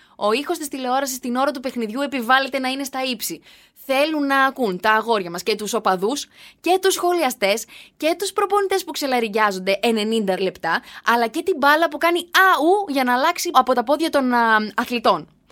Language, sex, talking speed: Greek, female, 185 wpm